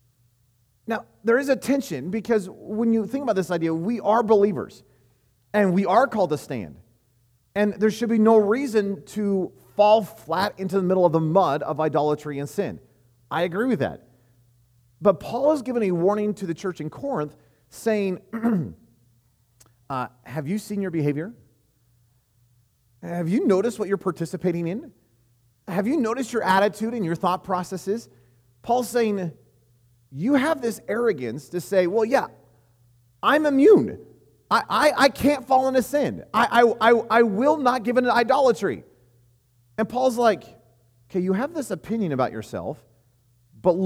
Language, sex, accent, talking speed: English, male, American, 160 wpm